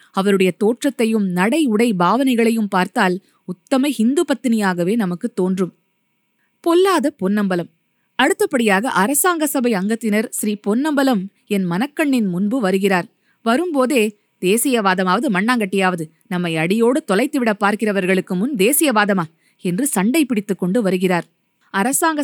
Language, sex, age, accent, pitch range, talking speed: Tamil, female, 20-39, native, 190-255 Hz, 95 wpm